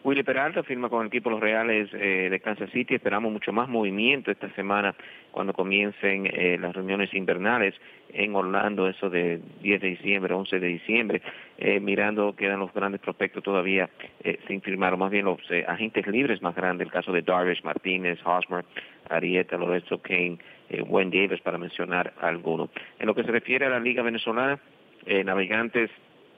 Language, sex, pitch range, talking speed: English, male, 90-110 Hz, 180 wpm